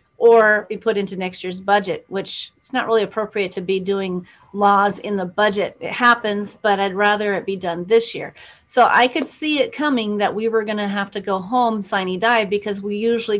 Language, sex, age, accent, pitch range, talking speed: English, female, 40-59, American, 190-225 Hz, 220 wpm